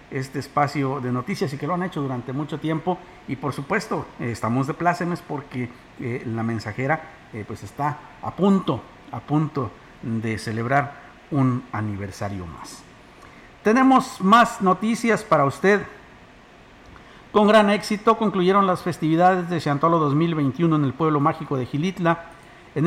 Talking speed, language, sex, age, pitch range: 145 wpm, Spanish, male, 50-69, 130-170 Hz